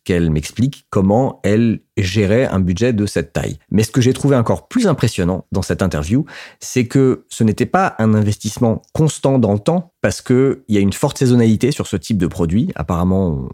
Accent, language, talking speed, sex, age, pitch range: French, French, 200 wpm, male, 40-59, 95-125 Hz